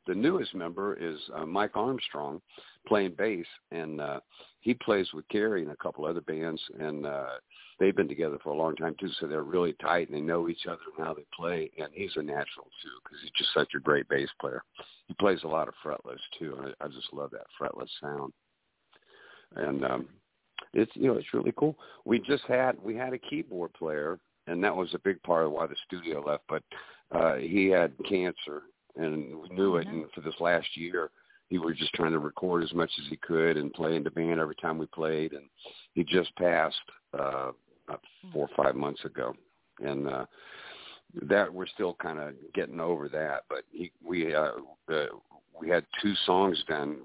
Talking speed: 210 wpm